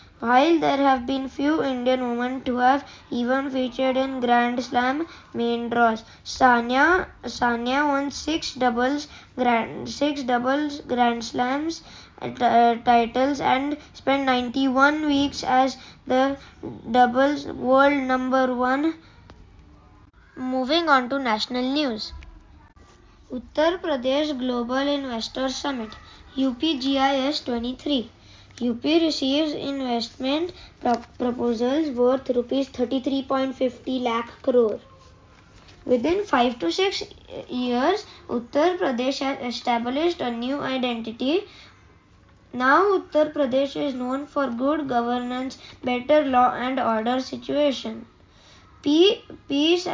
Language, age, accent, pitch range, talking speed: English, 20-39, Indian, 245-290 Hz, 100 wpm